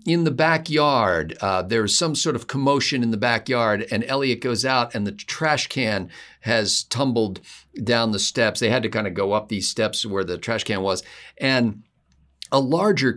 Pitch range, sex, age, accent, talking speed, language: 115-160 Hz, male, 50-69, American, 195 wpm, English